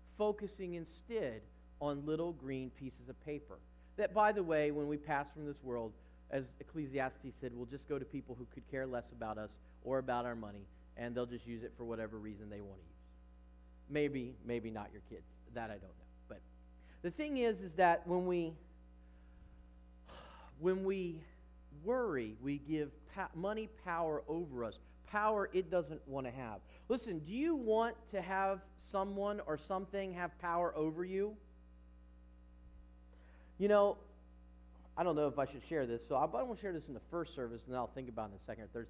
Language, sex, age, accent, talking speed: English, male, 40-59, American, 190 wpm